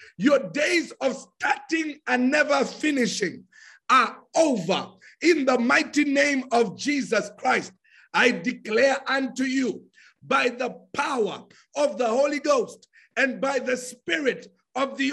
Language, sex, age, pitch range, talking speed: English, male, 50-69, 245-290 Hz, 130 wpm